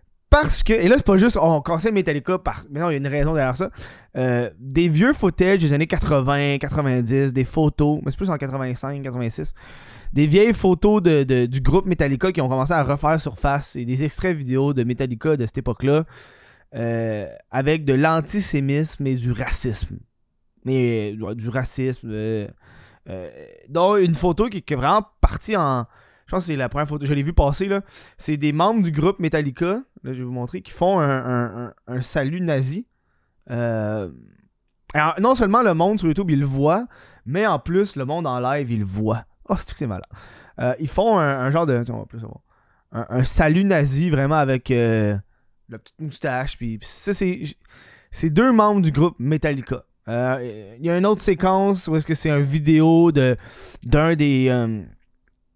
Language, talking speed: French, 205 wpm